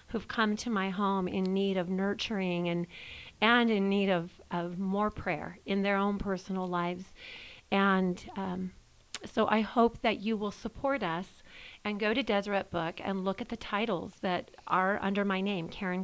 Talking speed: 180 wpm